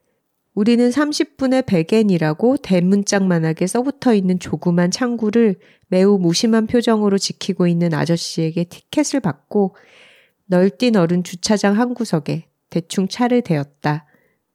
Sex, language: female, Korean